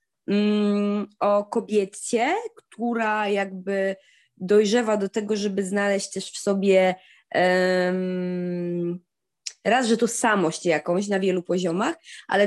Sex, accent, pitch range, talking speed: female, native, 205-280 Hz, 100 wpm